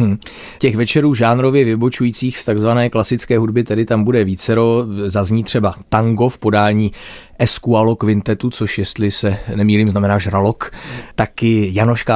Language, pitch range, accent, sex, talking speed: Czech, 100-120 Hz, native, male, 140 wpm